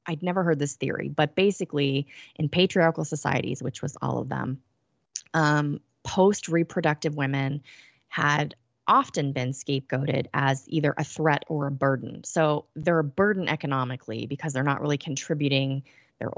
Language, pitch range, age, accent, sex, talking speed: English, 135-160 Hz, 20-39, American, female, 145 wpm